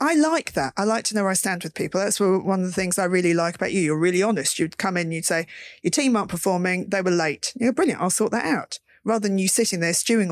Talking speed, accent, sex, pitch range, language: 290 wpm, British, female, 170-220 Hz, English